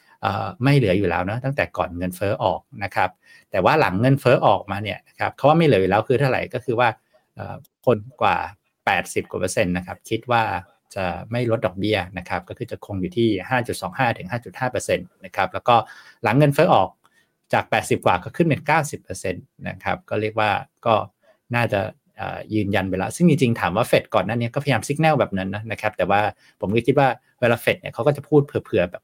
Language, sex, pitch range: Thai, male, 100-140 Hz